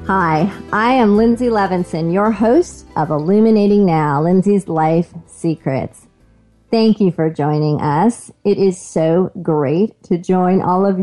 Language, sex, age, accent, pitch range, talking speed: English, female, 40-59, American, 170-240 Hz, 140 wpm